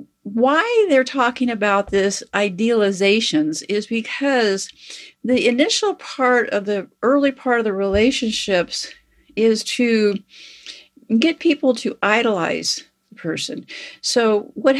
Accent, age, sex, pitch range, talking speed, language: American, 50-69, female, 195-255 Hz, 115 wpm, English